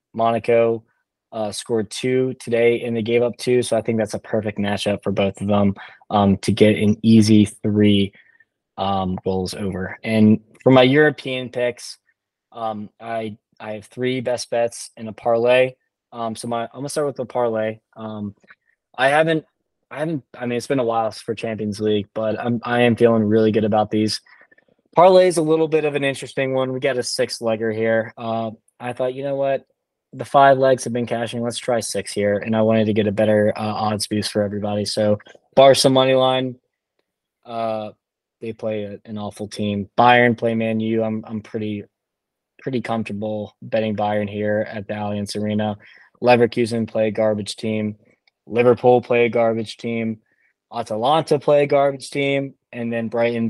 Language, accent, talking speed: English, American, 185 wpm